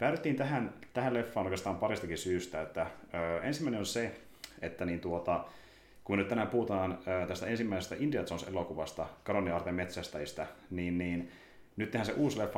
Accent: native